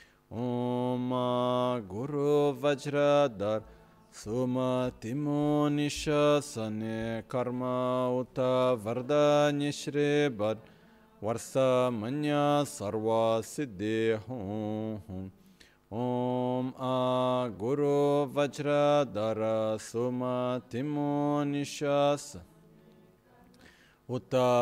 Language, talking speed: Italian, 50 wpm